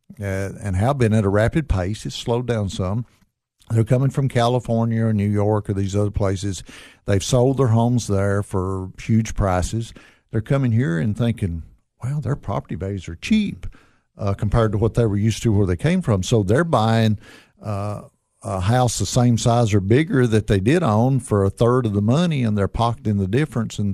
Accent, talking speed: American, 205 wpm